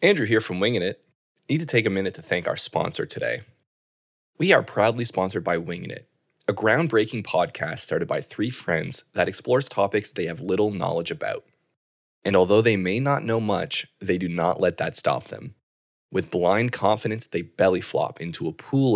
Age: 20-39